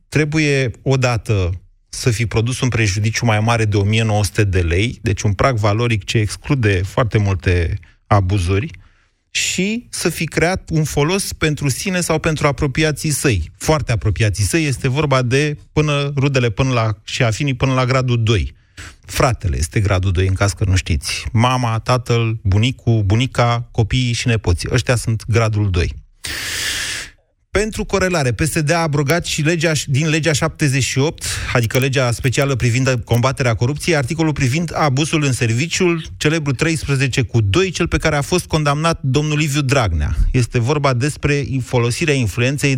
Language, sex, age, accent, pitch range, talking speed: Romanian, male, 30-49, native, 105-150 Hz, 155 wpm